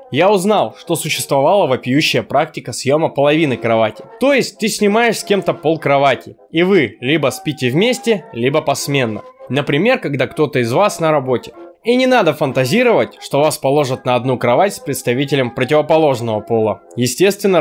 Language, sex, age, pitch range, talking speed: Russian, male, 20-39, 125-185 Hz, 155 wpm